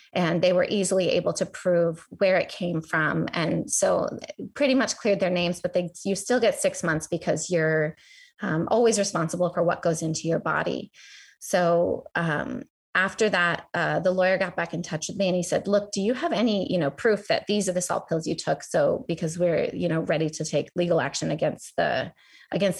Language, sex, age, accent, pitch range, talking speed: English, female, 30-49, American, 165-190 Hz, 215 wpm